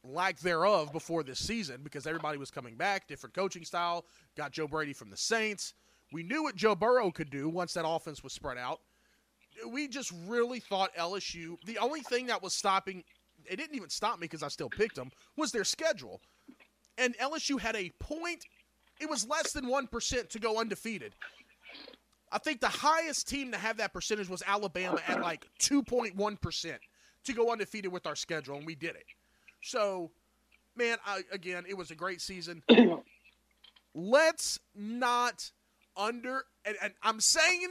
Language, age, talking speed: English, 30-49, 175 wpm